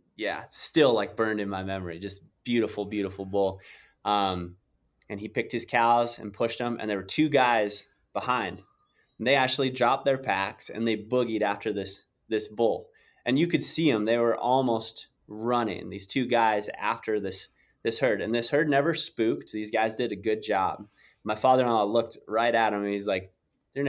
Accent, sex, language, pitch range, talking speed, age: American, male, English, 95-115 Hz, 190 wpm, 20-39